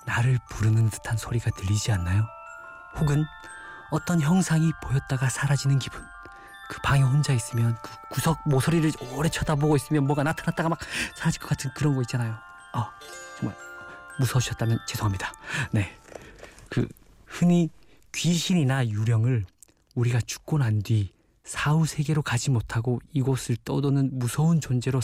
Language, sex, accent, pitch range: Korean, male, native, 120-155 Hz